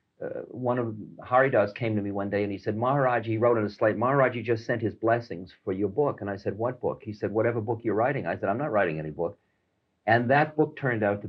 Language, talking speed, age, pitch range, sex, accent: English, 270 wpm, 50-69, 105-140 Hz, male, American